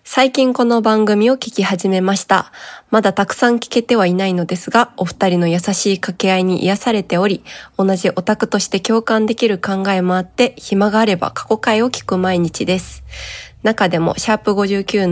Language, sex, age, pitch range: Japanese, female, 20-39, 185-220 Hz